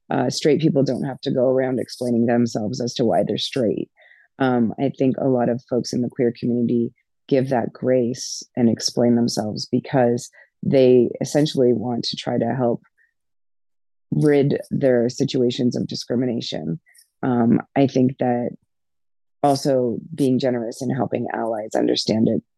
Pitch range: 120-135 Hz